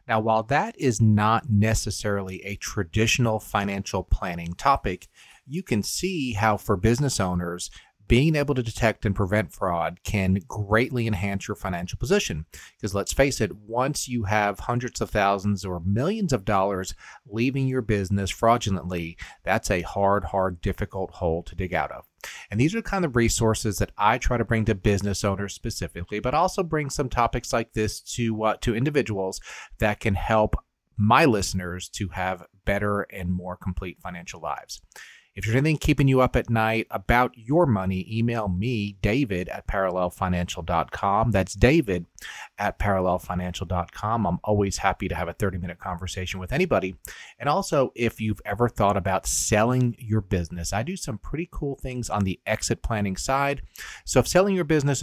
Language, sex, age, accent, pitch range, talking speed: English, male, 40-59, American, 95-120 Hz, 170 wpm